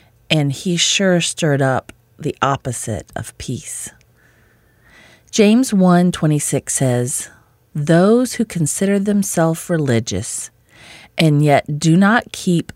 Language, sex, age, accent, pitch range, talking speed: English, female, 40-59, American, 120-175 Hz, 105 wpm